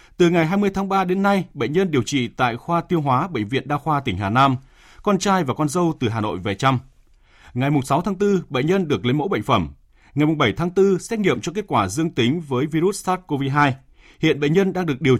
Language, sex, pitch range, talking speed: Vietnamese, male, 120-165 Hz, 250 wpm